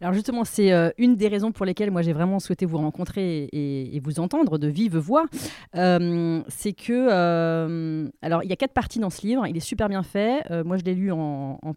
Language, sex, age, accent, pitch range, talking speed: French, female, 30-49, French, 165-215 Hz, 235 wpm